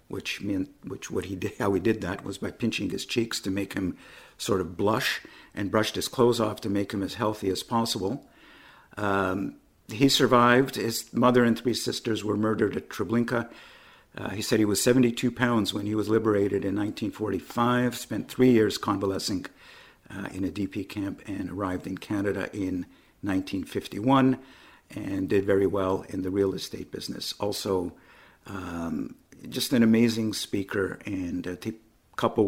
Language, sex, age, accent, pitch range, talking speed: English, male, 50-69, American, 95-115 Hz, 170 wpm